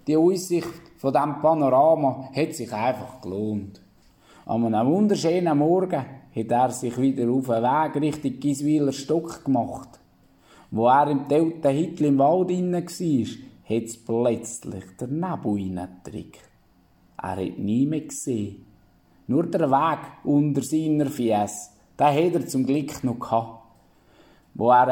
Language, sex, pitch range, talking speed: German, male, 115-150 Hz, 135 wpm